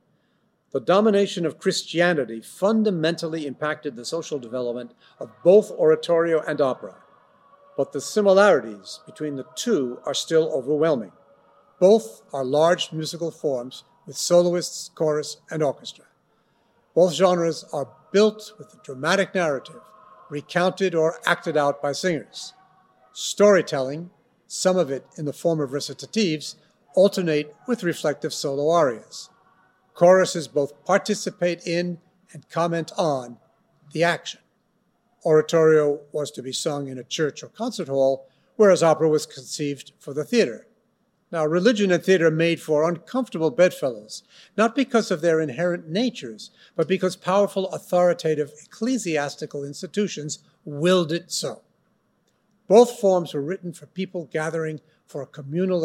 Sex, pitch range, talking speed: male, 150-190 Hz, 130 wpm